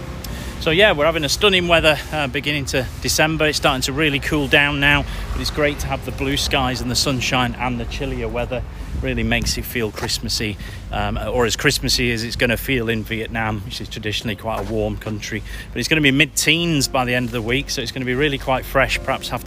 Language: English